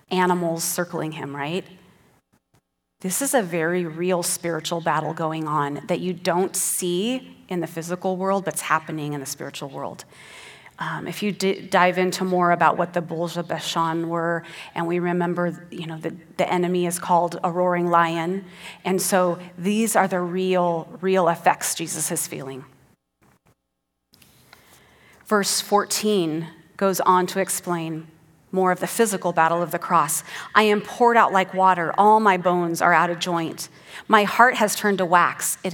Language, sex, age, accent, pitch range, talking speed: English, female, 30-49, American, 165-185 Hz, 165 wpm